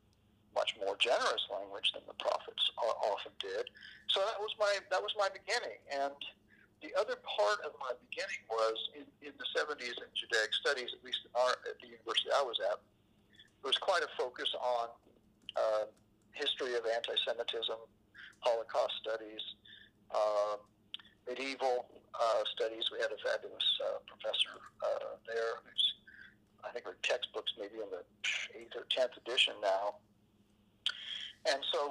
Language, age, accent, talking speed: English, 50-69, American, 150 wpm